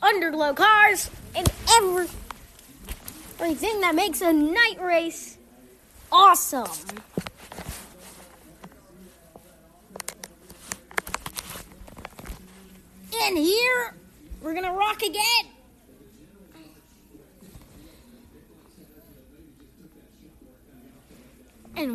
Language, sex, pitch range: English, female, 240-355 Hz